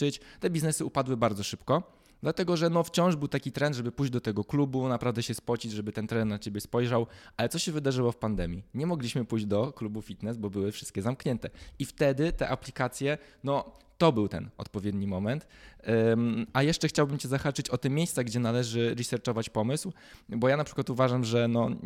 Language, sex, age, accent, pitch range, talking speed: Polish, male, 20-39, native, 110-140 Hz, 200 wpm